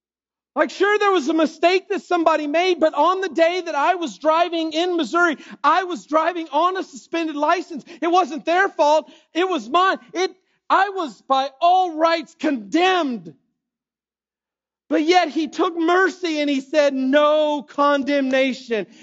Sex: male